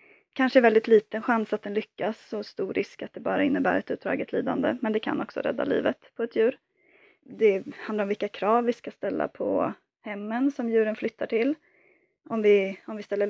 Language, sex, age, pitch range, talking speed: Swedish, female, 20-39, 210-275 Hz, 210 wpm